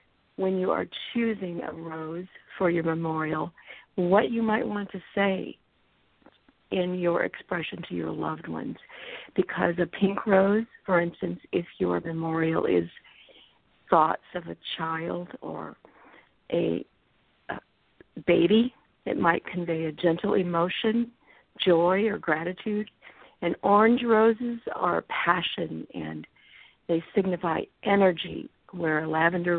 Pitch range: 160-200 Hz